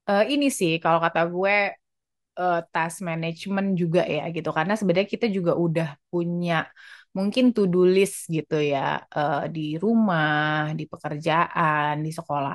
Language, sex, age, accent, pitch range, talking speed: Indonesian, female, 20-39, native, 165-205 Hz, 145 wpm